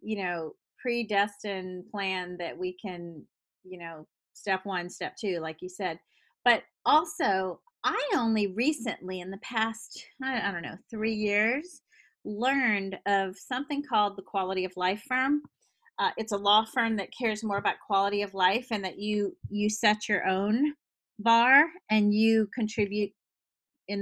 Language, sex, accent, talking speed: English, female, American, 155 wpm